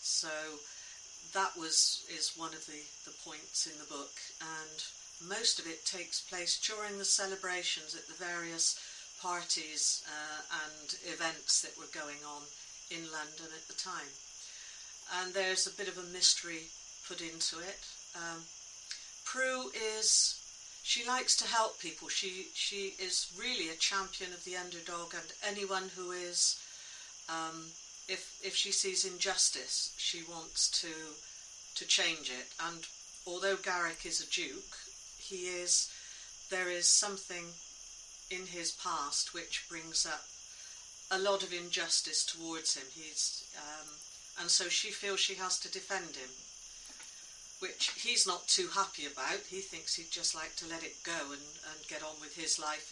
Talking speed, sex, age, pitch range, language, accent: 155 wpm, female, 50-69, 160-190 Hz, English, British